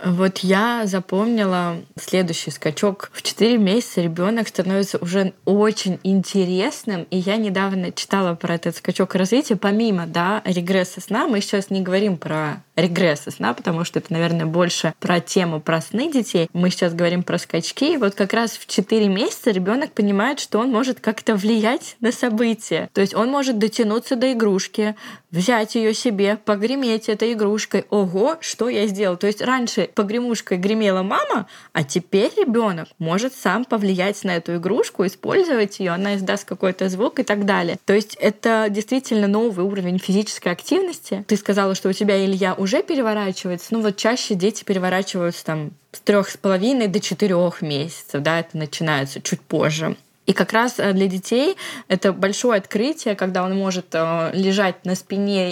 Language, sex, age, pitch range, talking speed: Russian, female, 20-39, 185-225 Hz, 165 wpm